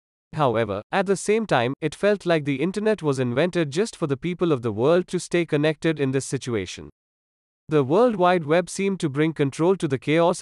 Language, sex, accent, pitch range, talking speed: English, male, Indian, 140-180 Hz, 205 wpm